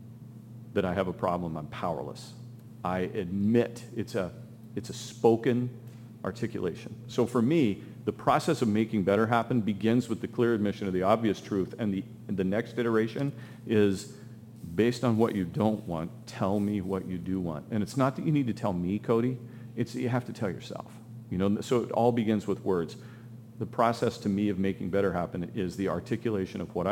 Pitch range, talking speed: 100-120 Hz, 200 wpm